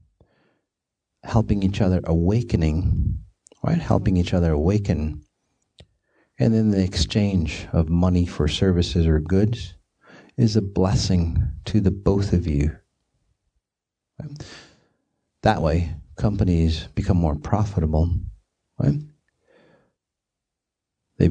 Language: English